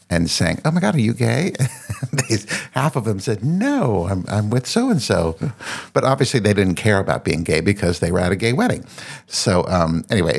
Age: 50-69